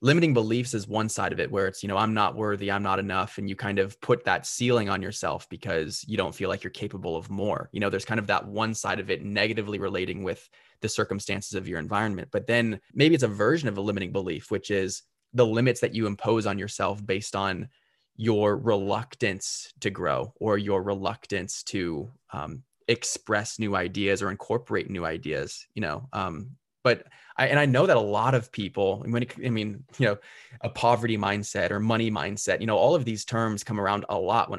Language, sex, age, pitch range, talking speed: English, male, 20-39, 100-115 Hz, 220 wpm